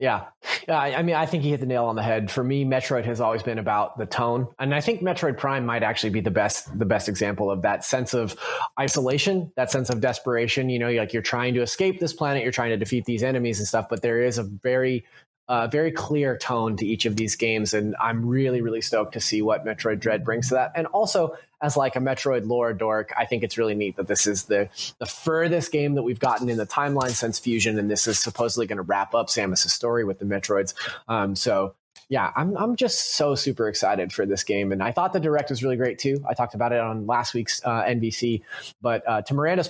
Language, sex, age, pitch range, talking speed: English, male, 30-49, 110-145 Hz, 250 wpm